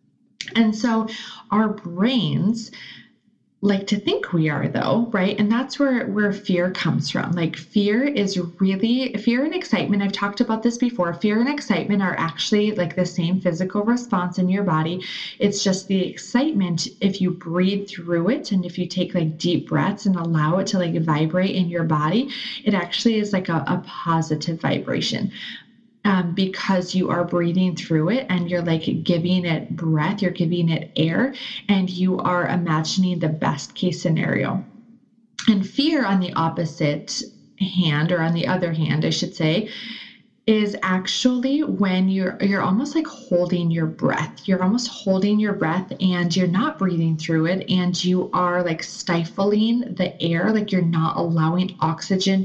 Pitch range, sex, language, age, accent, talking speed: 175-215 Hz, female, English, 30-49, American, 170 wpm